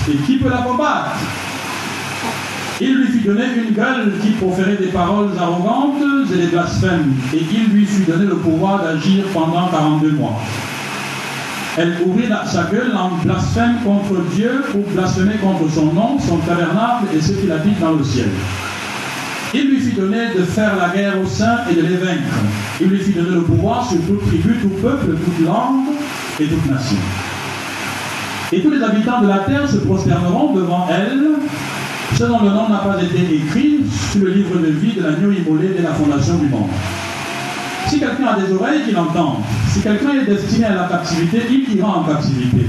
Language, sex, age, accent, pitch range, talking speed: French, male, 50-69, French, 155-220 Hz, 190 wpm